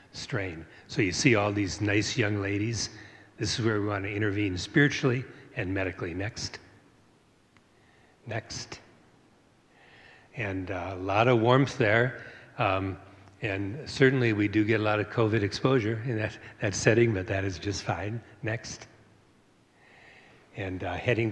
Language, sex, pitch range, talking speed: English, male, 100-120 Hz, 145 wpm